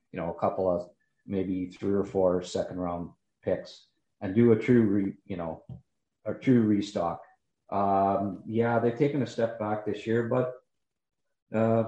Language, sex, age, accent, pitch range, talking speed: English, male, 40-59, American, 95-115 Hz, 160 wpm